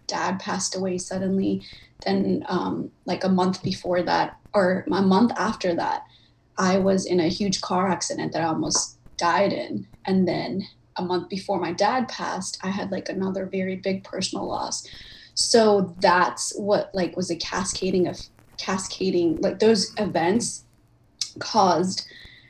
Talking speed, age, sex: 150 wpm, 20-39, female